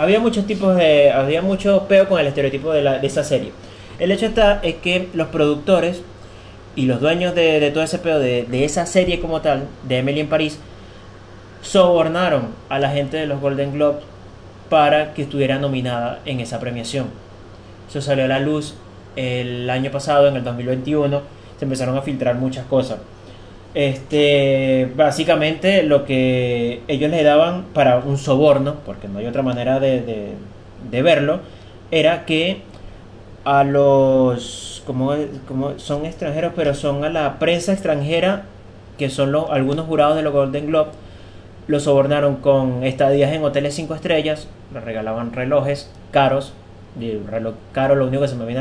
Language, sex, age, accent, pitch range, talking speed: Spanish, male, 30-49, Argentinian, 120-150 Hz, 170 wpm